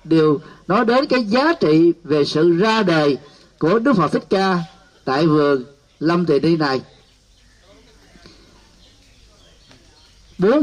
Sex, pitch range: male, 145-200 Hz